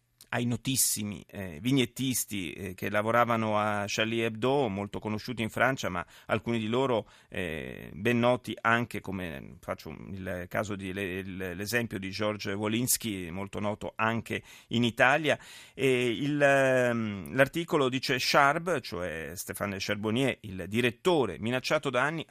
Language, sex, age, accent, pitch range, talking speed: Italian, male, 40-59, native, 115-145 Hz, 135 wpm